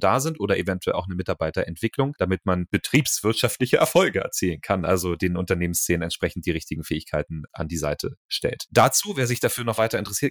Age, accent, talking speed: 30-49, German, 180 wpm